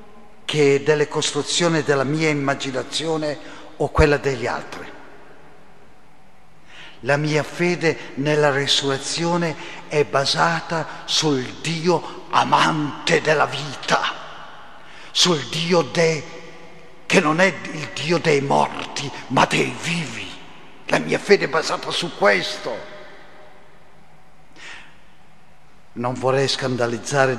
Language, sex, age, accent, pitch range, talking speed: Italian, male, 50-69, native, 140-175 Hz, 95 wpm